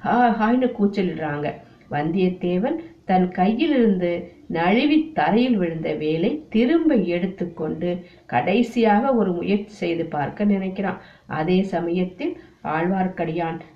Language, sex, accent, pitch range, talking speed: Tamil, female, native, 175-230 Hz, 85 wpm